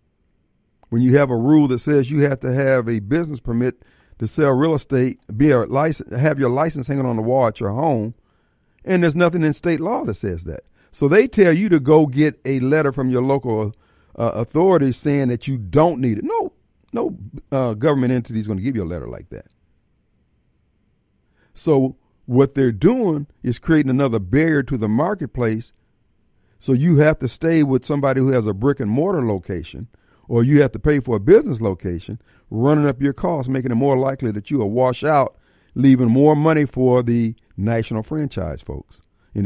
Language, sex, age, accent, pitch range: Japanese, male, 50-69, American, 115-150 Hz